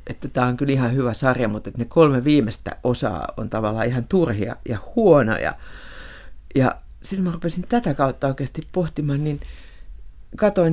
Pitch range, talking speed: 120-155 Hz, 160 wpm